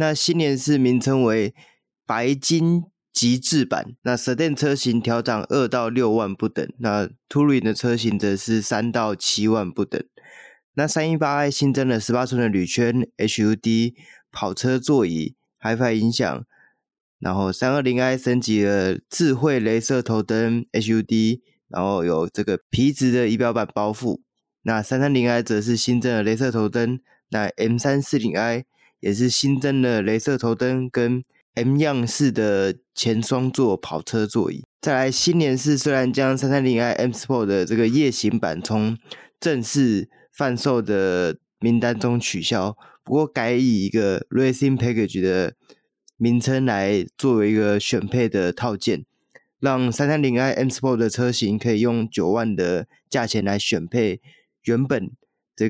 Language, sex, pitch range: Chinese, male, 110-130 Hz